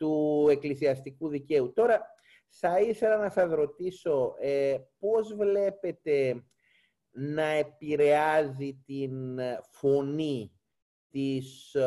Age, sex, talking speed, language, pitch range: 30-49, male, 85 wpm, Greek, 130-185 Hz